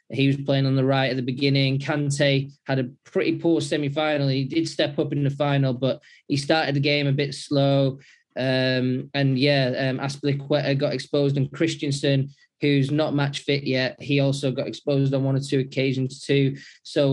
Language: English